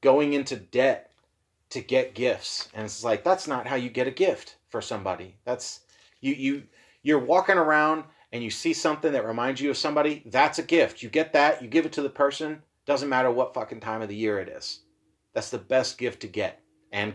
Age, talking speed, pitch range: 30-49, 220 wpm, 120-165 Hz